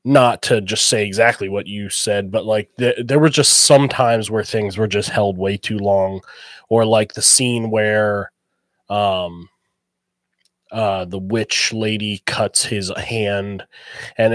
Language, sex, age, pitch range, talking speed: English, male, 20-39, 100-130 Hz, 160 wpm